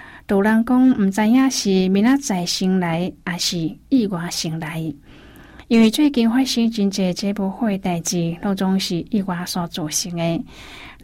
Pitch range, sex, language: 170-210 Hz, female, Chinese